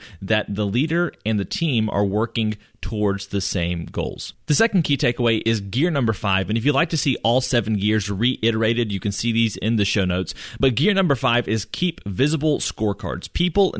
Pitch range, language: 100-130 Hz, English